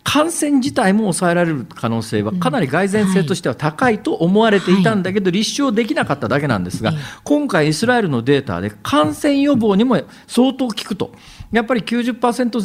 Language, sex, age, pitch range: Japanese, male, 40-59, 125-205 Hz